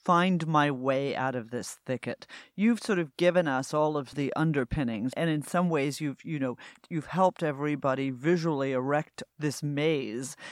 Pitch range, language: 135-180 Hz, English